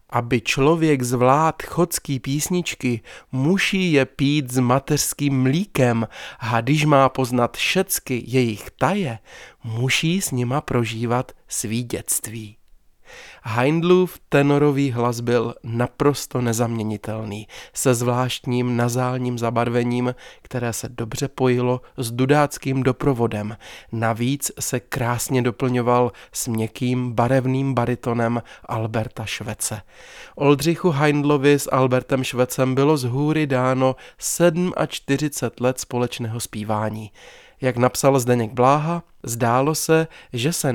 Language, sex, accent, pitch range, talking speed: Czech, male, native, 120-140 Hz, 110 wpm